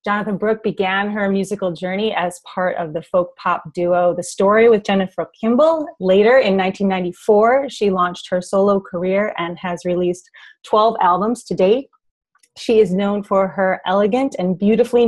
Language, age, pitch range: English, 30-49, 185-210 Hz